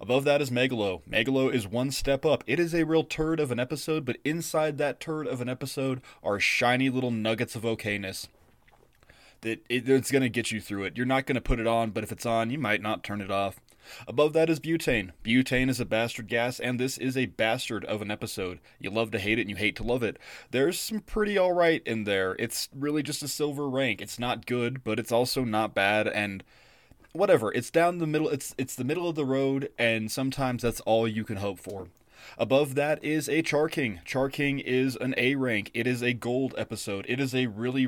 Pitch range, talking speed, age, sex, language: 115-140 Hz, 230 wpm, 20-39, male, English